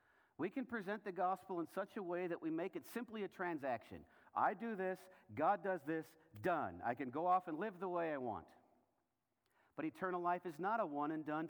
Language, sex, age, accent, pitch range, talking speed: English, male, 50-69, American, 150-200 Hz, 220 wpm